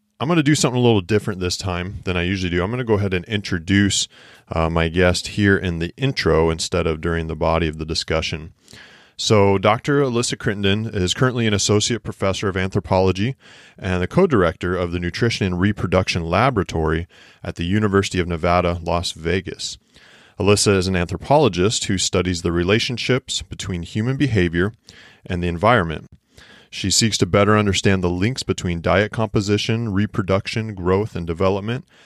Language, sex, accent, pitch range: English, male, American, 90-110 Hz